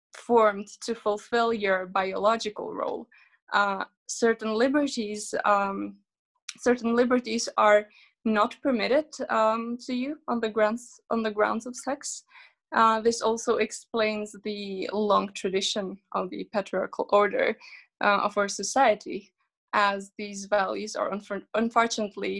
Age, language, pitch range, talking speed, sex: 20-39, English, 205-245 Hz, 125 wpm, female